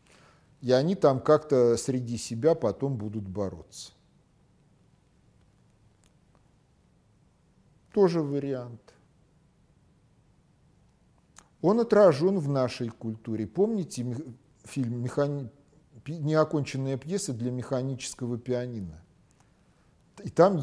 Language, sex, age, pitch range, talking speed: Russian, male, 50-69, 115-155 Hz, 75 wpm